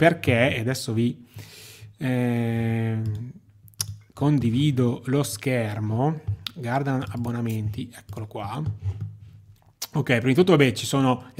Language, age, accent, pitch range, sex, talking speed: Italian, 30-49, native, 115-135 Hz, male, 100 wpm